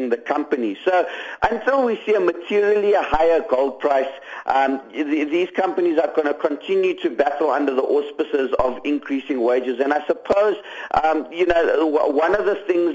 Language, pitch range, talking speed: English, 145-195 Hz, 165 wpm